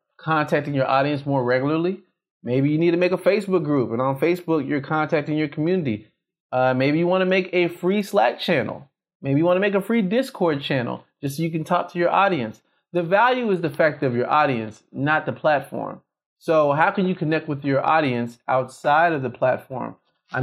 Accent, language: American, English